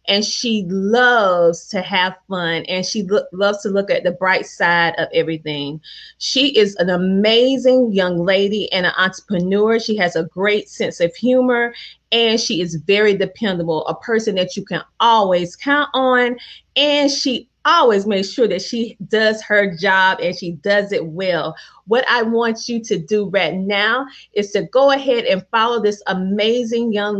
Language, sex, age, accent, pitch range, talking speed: English, female, 30-49, American, 185-235 Hz, 170 wpm